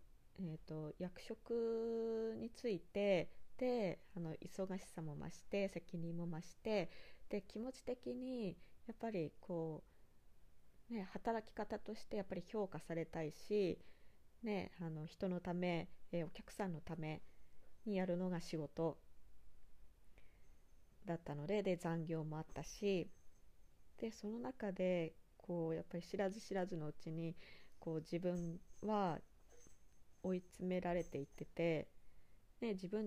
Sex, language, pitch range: female, Japanese, 165-215 Hz